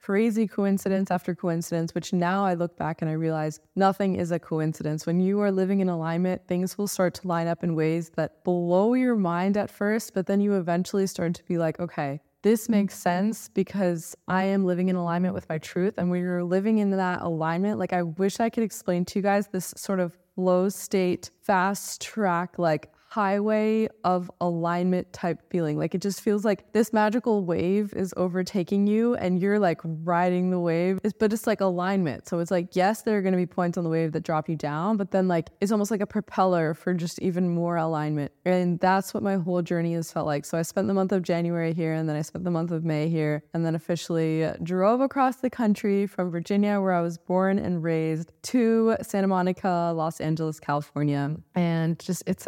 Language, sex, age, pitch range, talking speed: English, female, 20-39, 170-200 Hz, 215 wpm